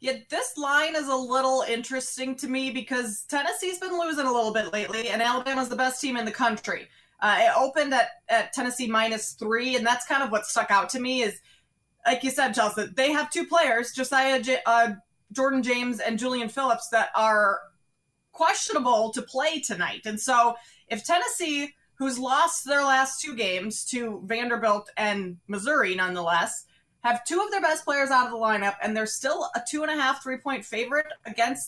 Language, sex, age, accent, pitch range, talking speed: English, female, 20-39, American, 220-275 Hz, 185 wpm